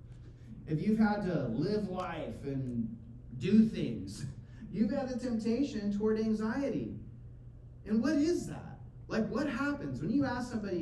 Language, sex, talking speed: English, male, 145 wpm